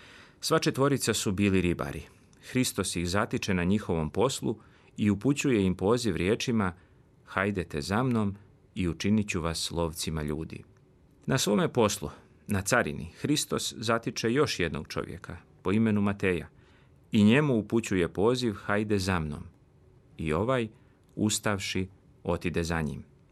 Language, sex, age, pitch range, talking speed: Croatian, male, 40-59, 90-120 Hz, 130 wpm